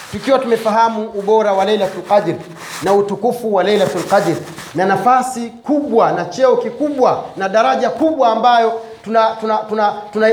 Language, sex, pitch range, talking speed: Swahili, male, 195-230 Hz, 140 wpm